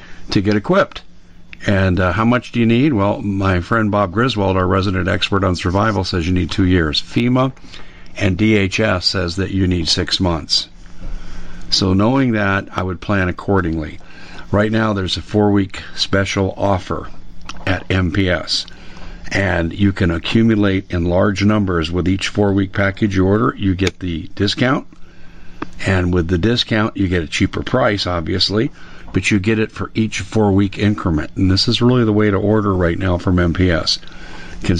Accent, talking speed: American, 170 wpm